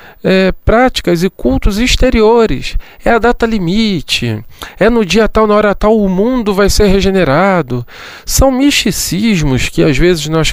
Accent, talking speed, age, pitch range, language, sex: Brazilian, 155 wpm, 40-59, 160-215 Hz, Portuguese, male